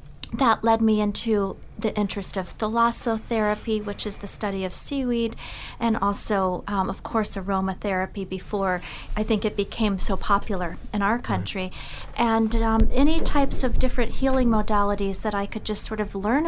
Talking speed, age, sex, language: 165 wpm, 40-59, female, English